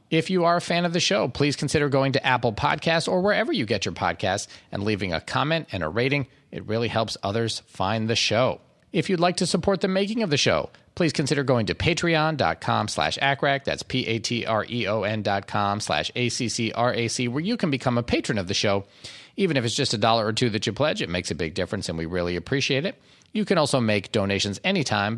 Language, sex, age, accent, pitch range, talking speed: English, male, 40-59, American, 100-140 Hz, 220 wpm